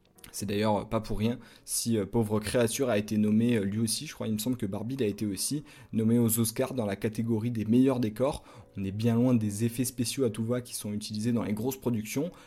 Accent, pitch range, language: French, 110-130 Hz, French